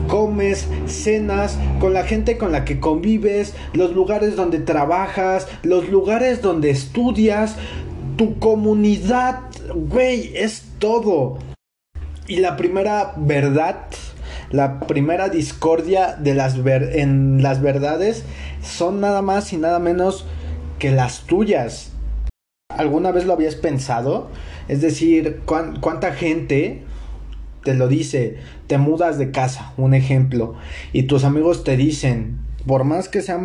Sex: male